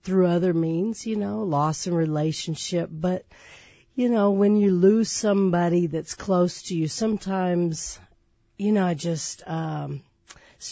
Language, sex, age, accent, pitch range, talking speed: English, female, 50-69, American, 160-190 Hz, 145 wpm